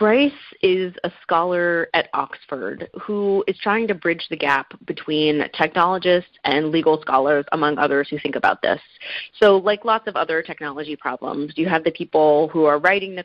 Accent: American